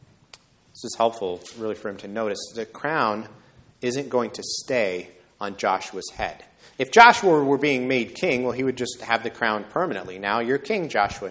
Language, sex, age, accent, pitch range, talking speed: English, male, 30-49, American, 115-155 Hz, 185 wpm